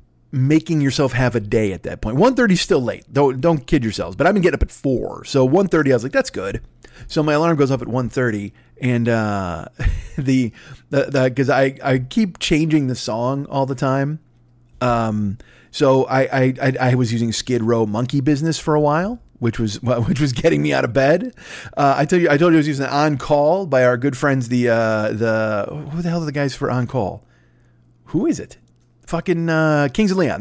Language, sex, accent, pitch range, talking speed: English, male, American, 110-150 Hz, 220 wpm